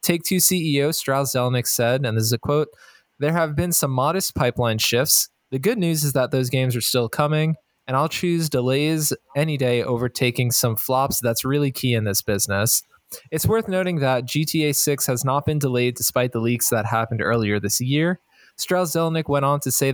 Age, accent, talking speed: 20-39, American, 200 wpm